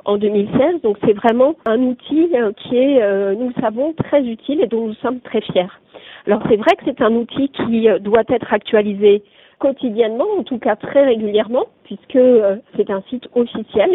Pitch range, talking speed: 210-265 Hz, 180 wpm